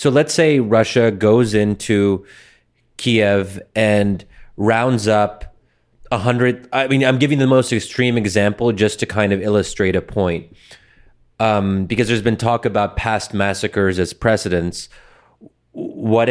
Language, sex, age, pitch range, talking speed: English, male, 30-49, 100-120 Hz, 140 wpm